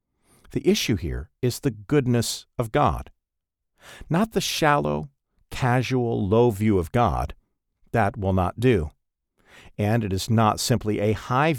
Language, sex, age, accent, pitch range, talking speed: English, male, 50-69, American, 95-125 Hz, 140 wpm